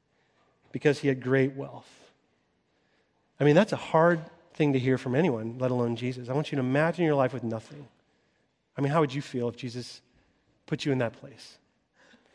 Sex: male